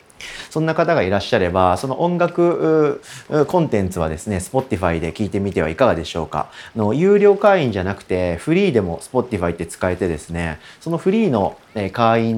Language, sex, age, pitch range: Japanese, male, 40-59, 90-145 Hz